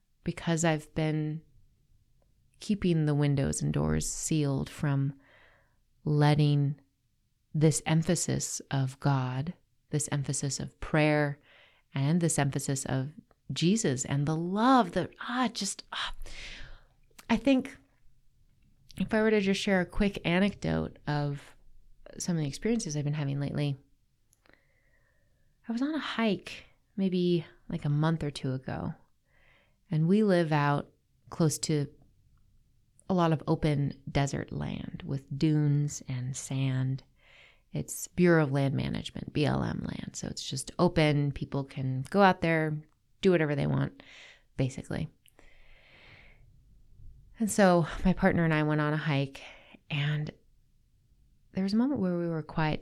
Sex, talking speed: female, 135 wpm